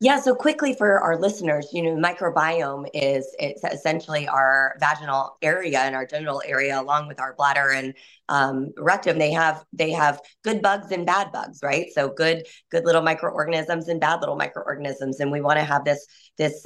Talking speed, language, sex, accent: 185 wpm, English, female, American